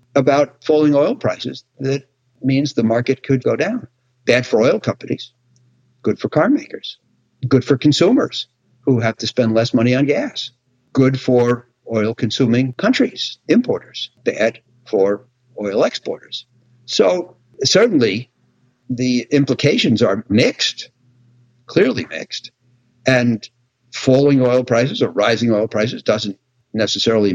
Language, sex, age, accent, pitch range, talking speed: English, male, 60-79, American, 115-130 Hz, 125 wpm